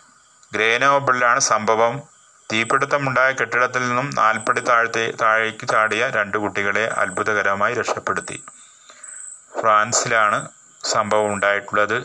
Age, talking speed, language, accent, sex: 30-49, 80 wpm, Malayalam, native, male